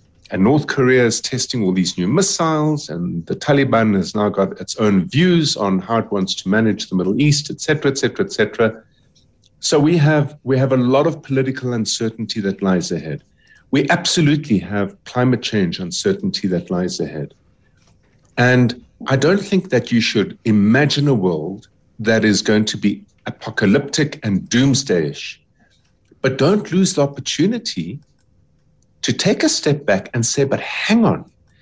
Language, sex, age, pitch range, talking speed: English, male, 50-69, 110-165 Hz, 165 wpm